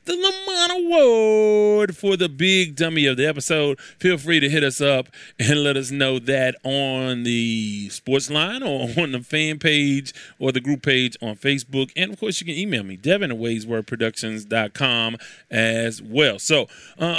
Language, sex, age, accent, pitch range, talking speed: English, male, 30-49, American, 125-160 Hz, 170 wpm